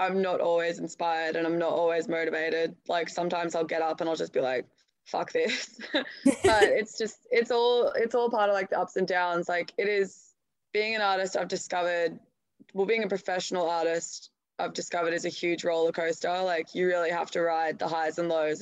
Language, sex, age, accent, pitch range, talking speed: English, female, 20-39, Australian, 170-200 Hz, 210 wpm